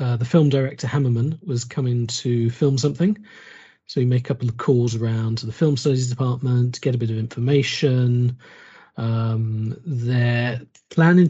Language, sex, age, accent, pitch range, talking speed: English, male, 40-59, British, 120-150 Hz, 170 wpm